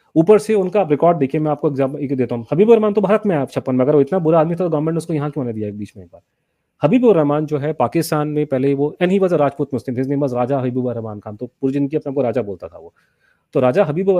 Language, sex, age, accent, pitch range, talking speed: English, male, 30-49, Indian, 125-165 Hz, 220 wpm